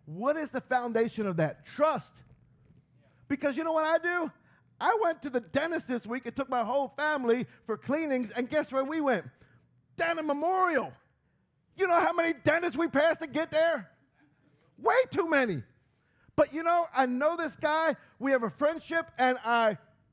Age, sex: 50-69, male